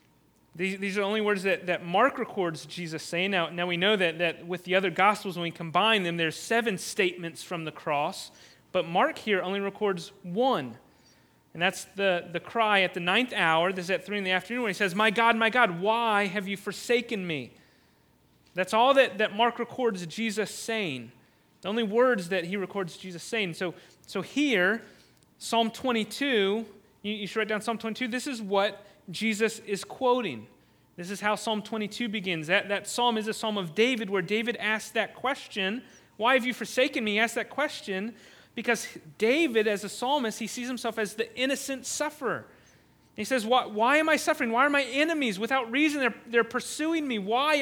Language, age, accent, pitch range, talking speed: English, 30-49, American, 195-245 Hz, 200 wpm